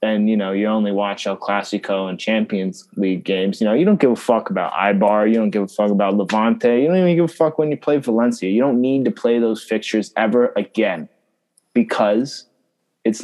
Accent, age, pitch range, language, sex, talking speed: American, 20-39, 105-120 Hz, English, male, 220 wpm